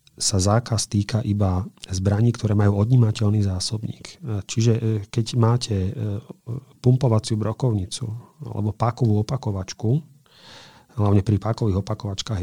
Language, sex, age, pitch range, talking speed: Slovak, male, 40-59, 100-115 Hz, 100 wpm